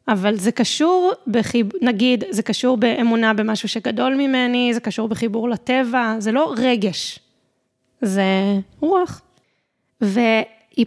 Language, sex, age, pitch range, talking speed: Hebrew, female, 20-39, 220-260 Hz, 115 wpm